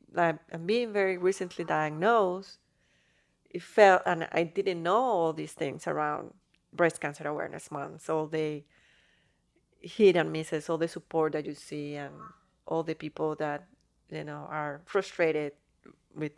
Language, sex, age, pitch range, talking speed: English, female, 30-49, 150-175 Hz, 150 wpm